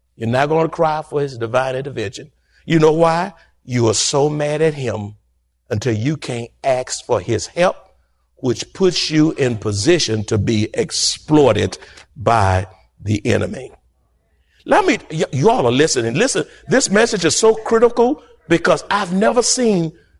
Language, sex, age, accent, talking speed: English, male, 50-69, American, 155 wpm